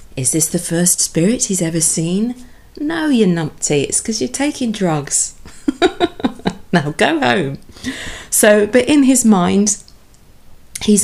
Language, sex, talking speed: English, female, 135 wpm